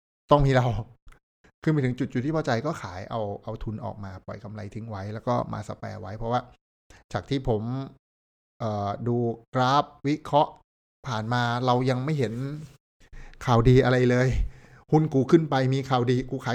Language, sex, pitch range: Thai, male, 110-130 Hz